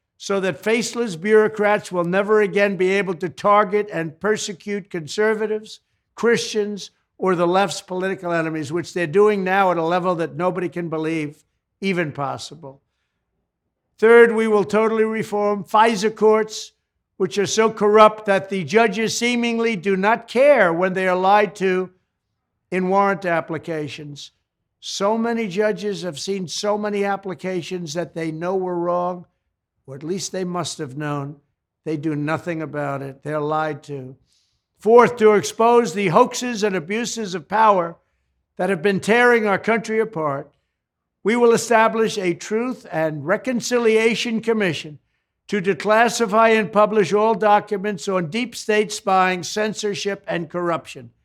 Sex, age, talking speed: male, 60-79, 145 wpm